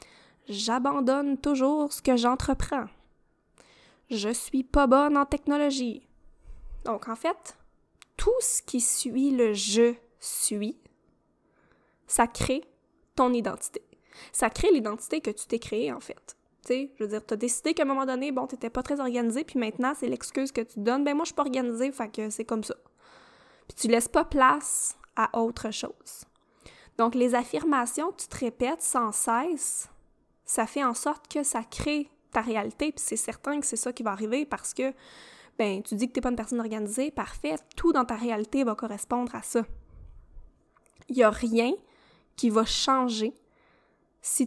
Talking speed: 180 wpm